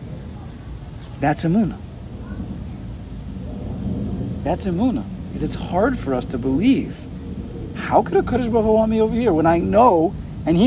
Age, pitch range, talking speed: 40-59, 95-155 Hz, 140 wpm